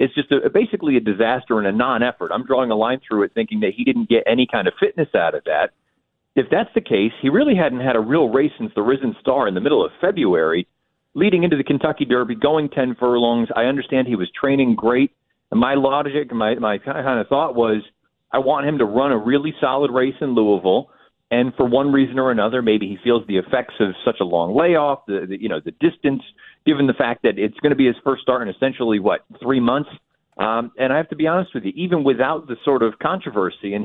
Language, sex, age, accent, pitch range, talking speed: English, male, 40-59, American, 110-145 Hz, 240 wpm